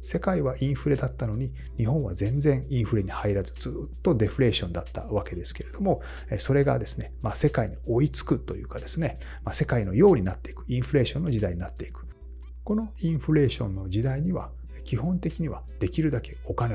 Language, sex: Japanese, male